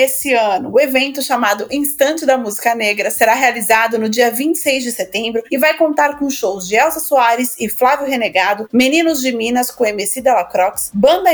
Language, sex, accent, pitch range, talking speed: Portuguese, female, Brazilian, 230-280 Hz, 180 wpm